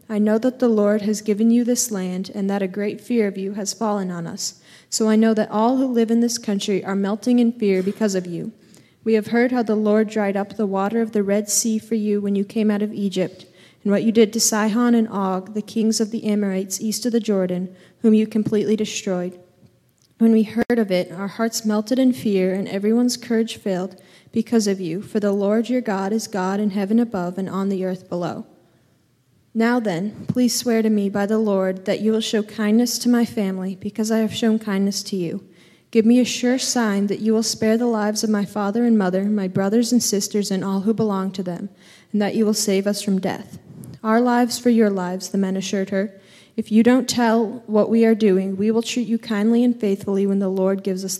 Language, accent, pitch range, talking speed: English, American, 195-225 Hz, 235 wpm